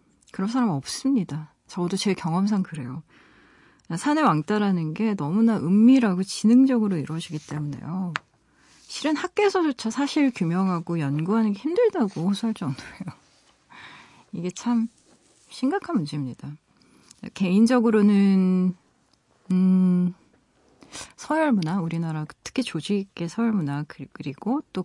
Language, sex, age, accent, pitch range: Korean, female, 40-59, native, 160-225 Hz